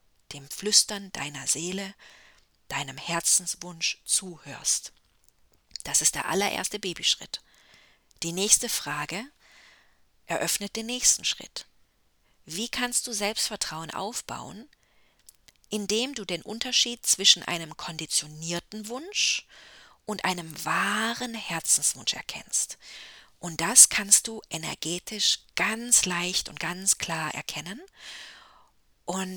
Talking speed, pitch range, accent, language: 100 wpm, 170-235 Hz, German, English